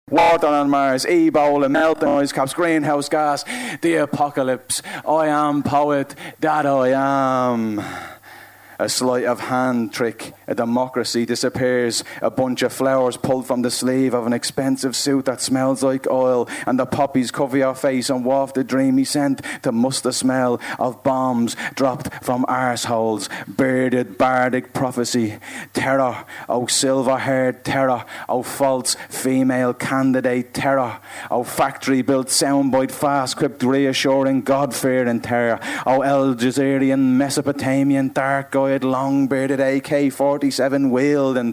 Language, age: English, 30-49